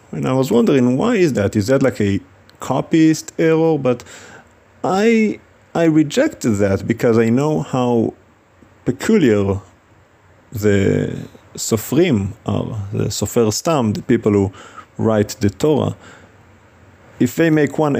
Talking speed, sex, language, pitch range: 130 wpm, male, English, 100-120 Hz